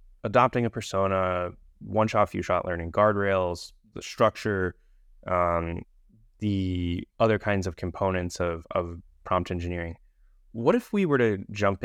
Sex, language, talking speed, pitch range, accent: male, English, 125 wpm, 85-105 Hz, American